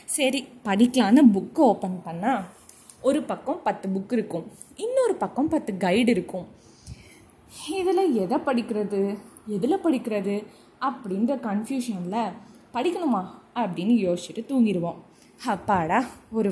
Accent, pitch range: native, 195-270 Hz